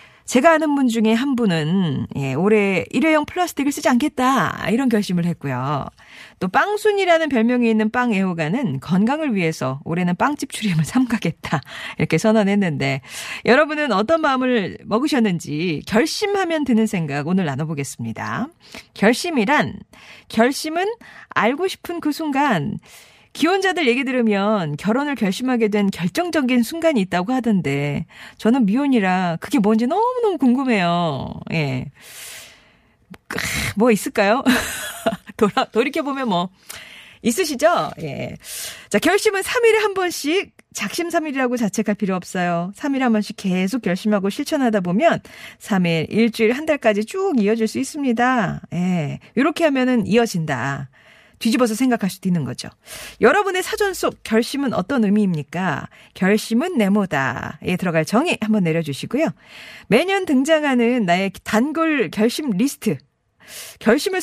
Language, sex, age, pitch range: Korean, female, 40-59, 185-285 Hz